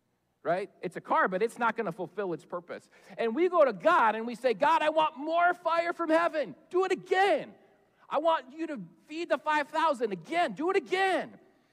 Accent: American